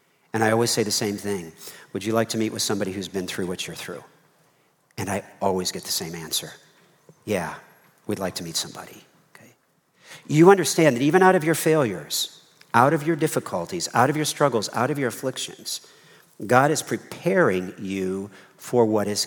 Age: 50-69